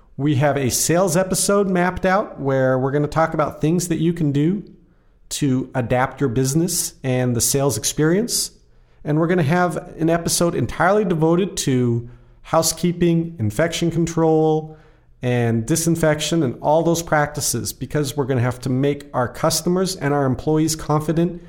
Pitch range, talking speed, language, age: 125-165 Hz, 160 wpm, English, 40-59